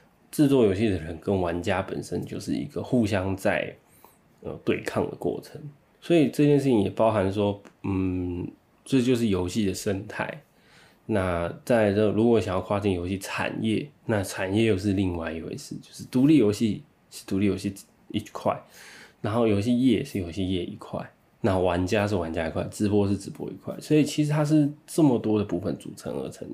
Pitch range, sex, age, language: 95-110 Hz, male, 20-39, Chinese